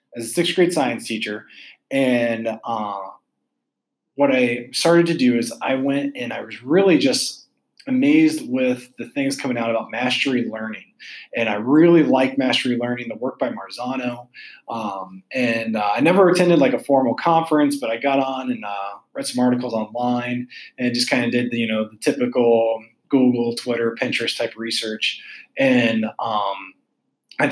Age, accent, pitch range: 20-39, American, 115-170 Hz